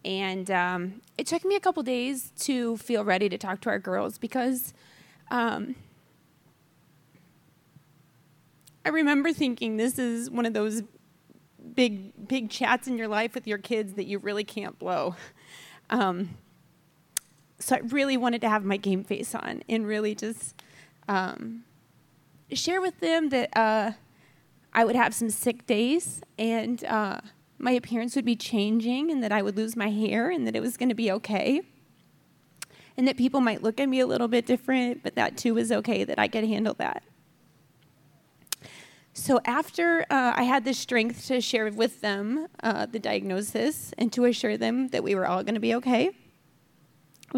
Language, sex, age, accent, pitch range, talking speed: English, female, 20-39, American, 200-250 Hz, 170 wpm